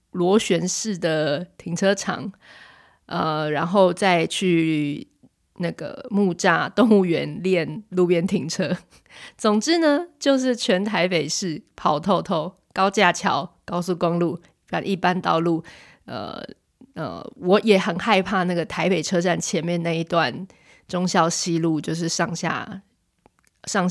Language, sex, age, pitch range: Chinese, female, 20-39, 170-200 Hz